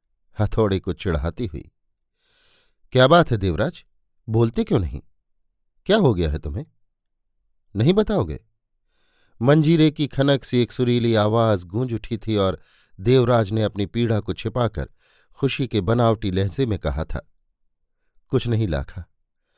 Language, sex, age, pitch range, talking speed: Hindi, male, 50-69, 100-140 Hz, 140 wpm